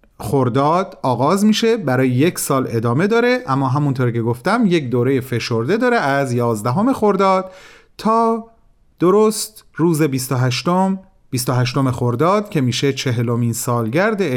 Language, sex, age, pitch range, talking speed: Persian, male, 40-59, 120-185 Hz, 135 wpm